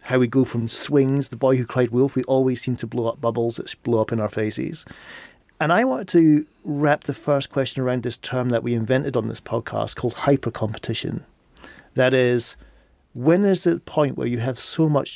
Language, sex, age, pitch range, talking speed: English, male, 40-59, 120-155 Hz, 215 wpm